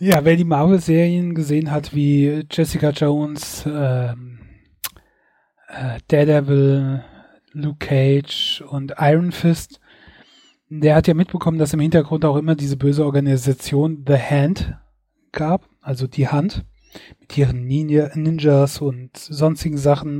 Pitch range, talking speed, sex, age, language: 140-170 Hz, 120 wpm, male, 30-49, German